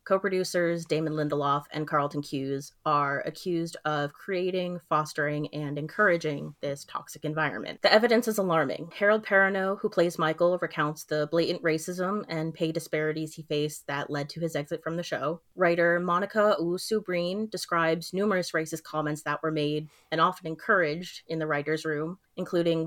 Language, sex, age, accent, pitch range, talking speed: English, female, 30-49, American, 155-180 Hz, 155 wpm